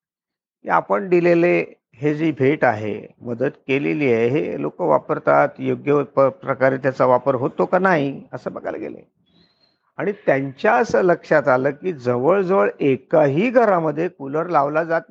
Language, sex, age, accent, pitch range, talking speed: Marathi, male, 50-69, native, 135-200 Hz, 140 wpm